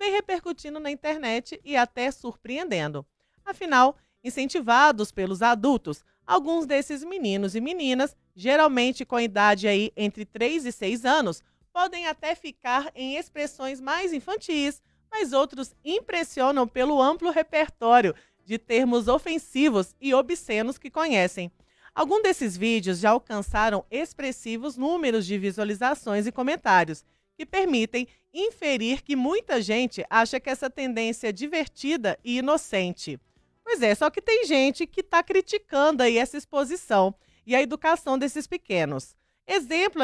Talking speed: 130 wpm